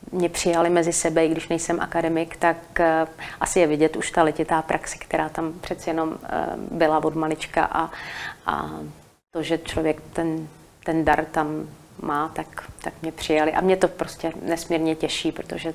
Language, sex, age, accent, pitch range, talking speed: Czech, female, 30-49, native, 155-175 Hz, 175 wpm